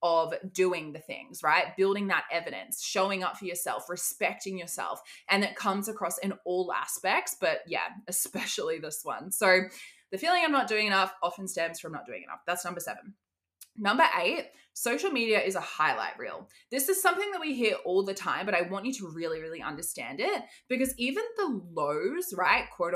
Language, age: English, 20-39